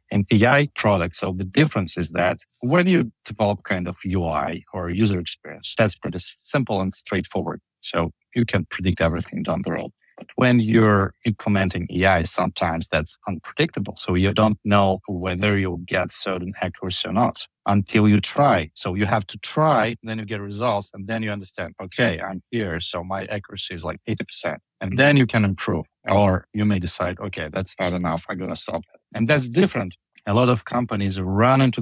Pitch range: 95-120 Hz